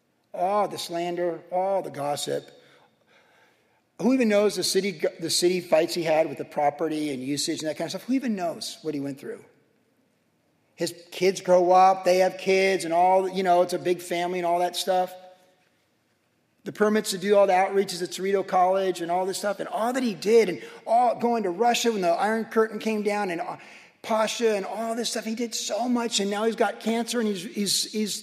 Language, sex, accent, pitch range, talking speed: English, male, American, 170-210 Hz, 215 wpm